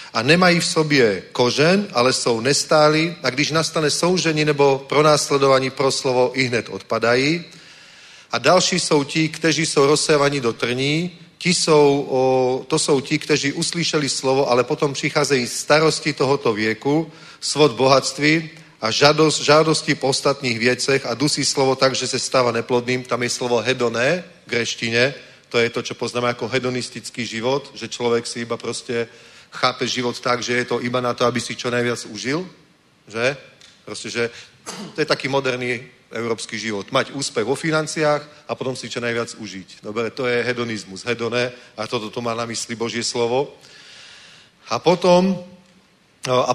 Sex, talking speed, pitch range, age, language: male, 155 wpm, 120-155 Hz, 40-59, Czech